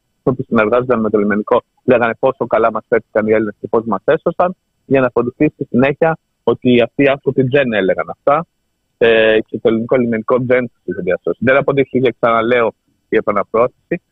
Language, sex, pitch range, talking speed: Greek, male, 110-140 Hz, 185 wpm